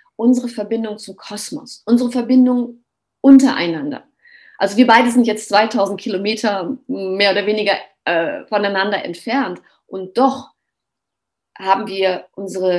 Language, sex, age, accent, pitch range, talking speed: German, female, 30-49, German, 195-260 Hz, 115 wpm